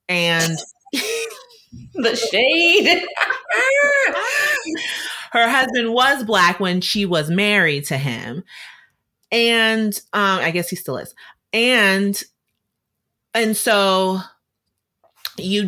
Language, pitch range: English, 165-230 Hz